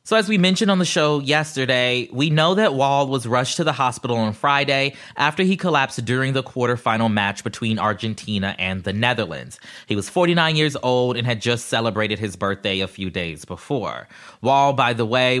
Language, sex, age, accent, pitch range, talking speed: English, male, 20-39, American, 110-140 Hz, 195 wpm